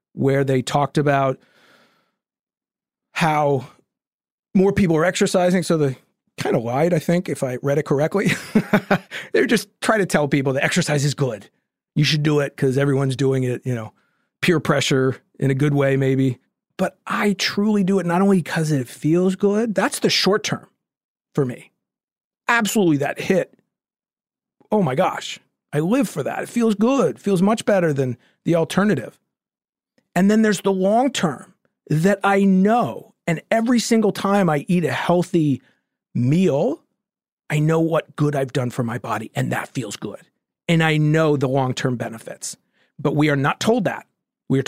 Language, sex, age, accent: English, male, 40-59, American